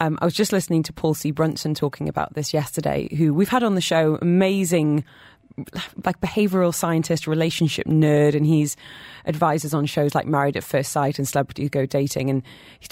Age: 20-39